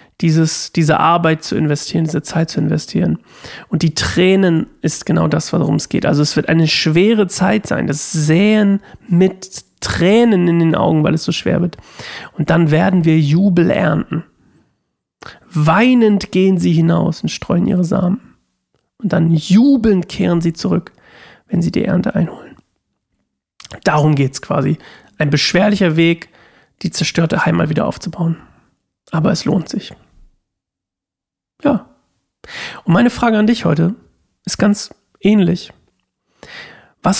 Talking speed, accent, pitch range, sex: 140 wpm, German, 160-200 Hz, male